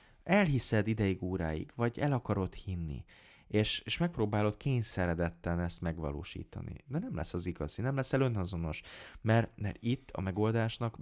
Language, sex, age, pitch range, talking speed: Hungarian, male, 30-49, 85-115 Hz, 140 wpm